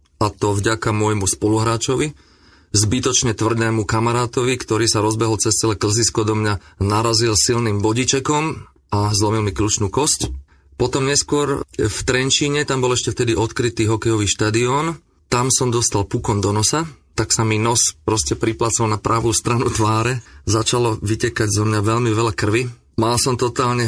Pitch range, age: 110-120 Hz, 30-49